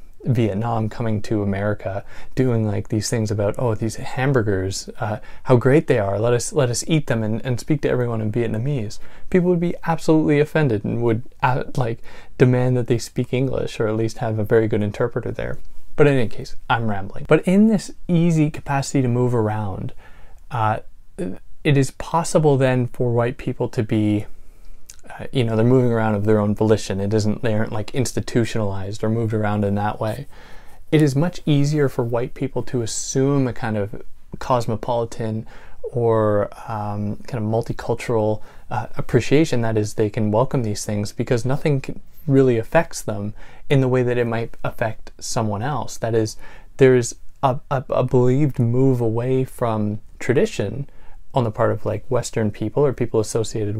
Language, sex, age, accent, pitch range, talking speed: English, male, 20-39, American, 110-130 Hz, 180 wpm